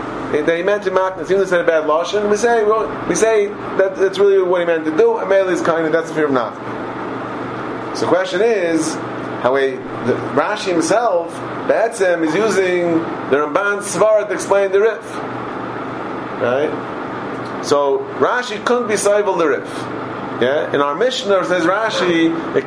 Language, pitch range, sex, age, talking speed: English, 160-195 Hz, male, 30-49, 180 wpm